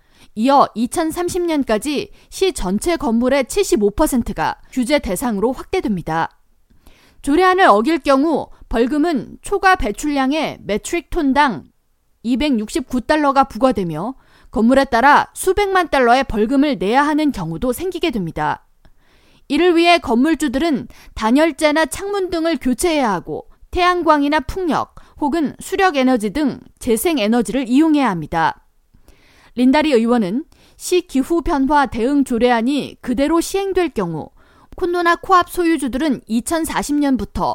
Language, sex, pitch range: Korean, female, 235-325 Hz